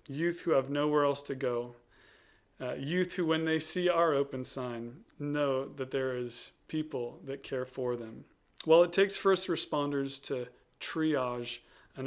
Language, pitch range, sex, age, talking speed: English, 125-155 Hz, male, 40-59, 165 wpm